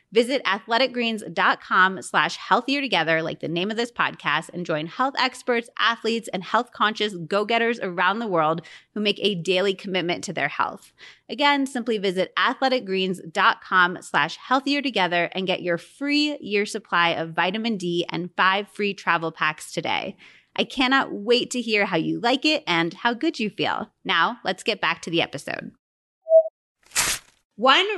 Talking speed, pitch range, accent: 160 wpm, 180-235 Hz, American